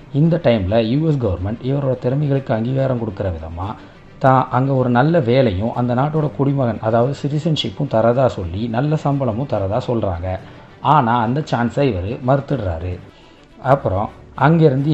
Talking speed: 130 wpm